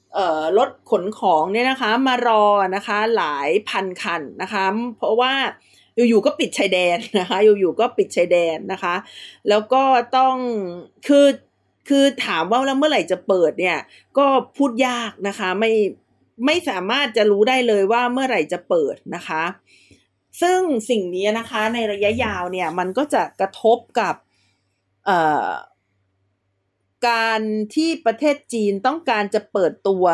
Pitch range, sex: 180-240 Hz, female